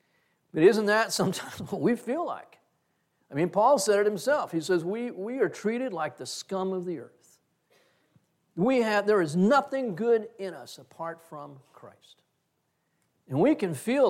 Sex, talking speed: male, 175 wpm